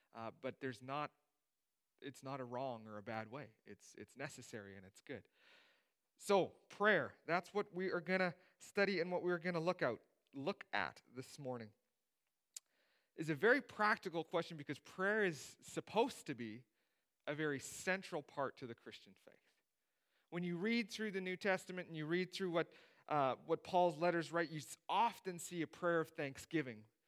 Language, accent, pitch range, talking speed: English, American, 145-185 Hz, 195 wpm